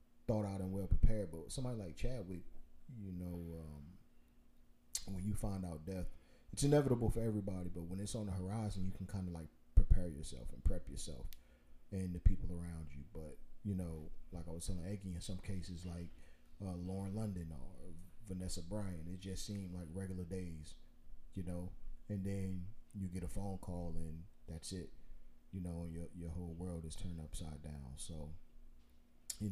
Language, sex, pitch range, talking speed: English, male, 80-100 Hz, 185 wpm